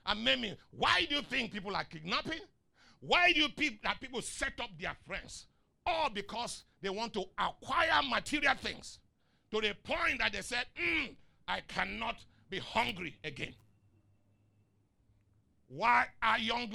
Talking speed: 155 wpm